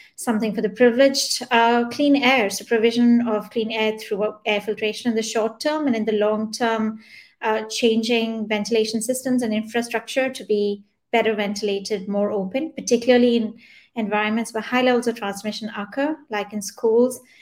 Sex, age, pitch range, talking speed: female, 20-39, 210-240 Hz, 165 wpm